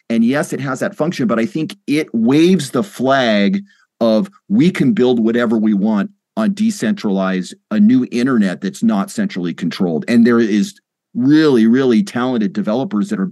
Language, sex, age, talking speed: English, male, 40-59, 170 wpm